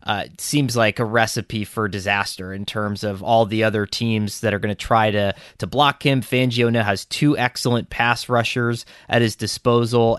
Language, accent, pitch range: English, American, 105-125 Hz